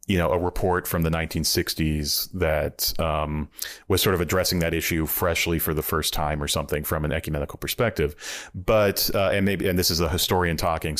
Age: 30-49